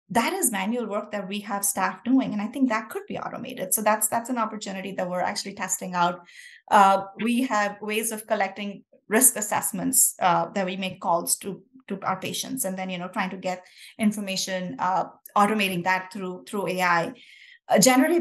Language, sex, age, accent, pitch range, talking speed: English, female, 20-39, Indian, 190-235 Hz, 195 wpm